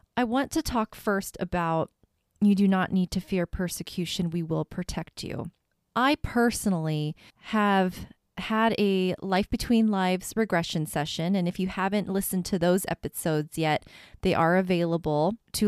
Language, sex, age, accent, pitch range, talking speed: English, female, 20-39, American, 165-210 Hz, 155 wpm